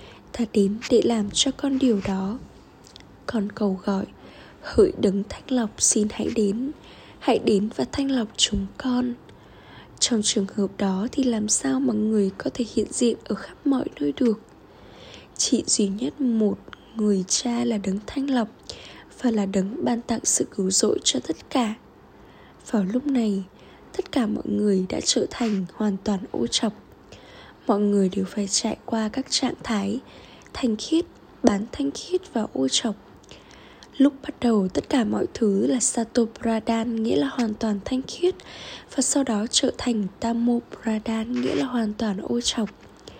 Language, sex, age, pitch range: Vietnamese, female, 10-29, 210-250 Hz